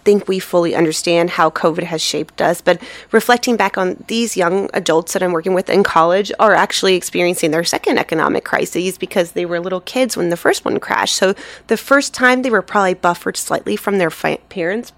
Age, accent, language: 20-39, American, English